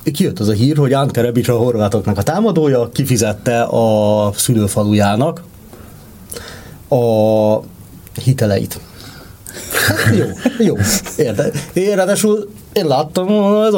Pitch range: 110-150 Hz